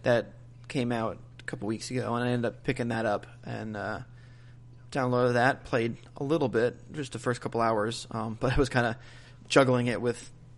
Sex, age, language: male, 30-49, English